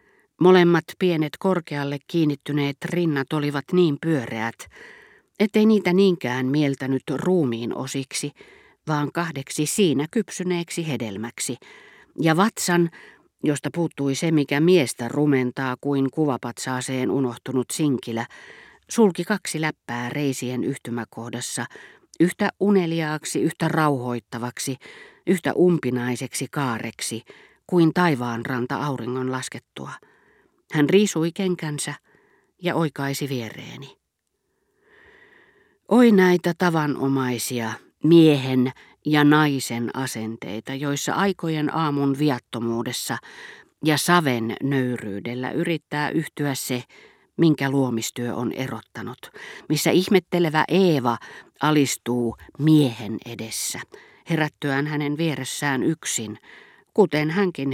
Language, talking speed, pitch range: Finnish, 90 wpm, 130-170 Hz